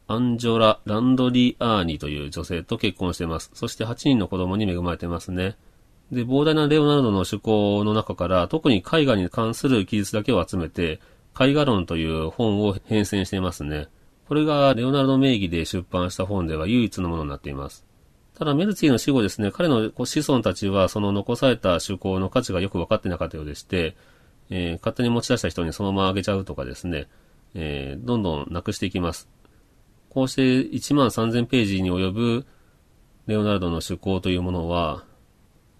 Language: Japanese